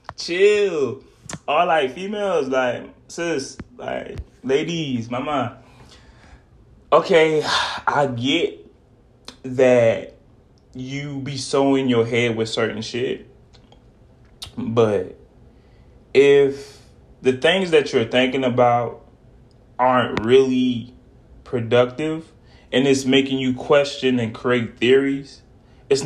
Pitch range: 120-140 Hz